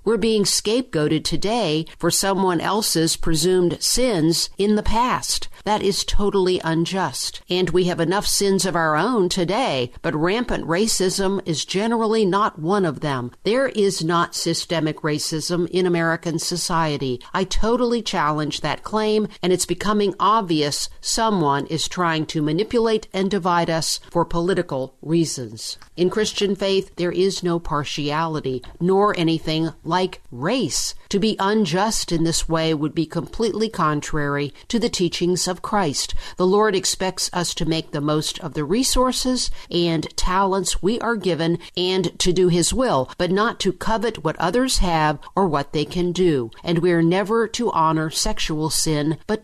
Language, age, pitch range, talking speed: English, 50-69, 160-200 Hz, 160 wpm